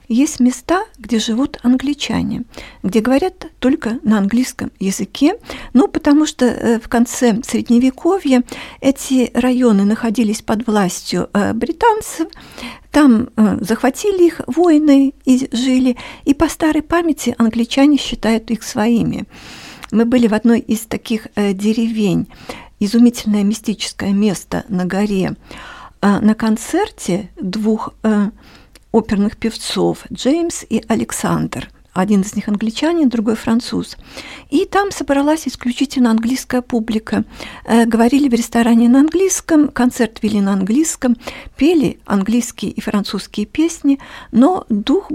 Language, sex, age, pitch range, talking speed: Russian, female, 50-69, 215-275 Hz, 115 wpm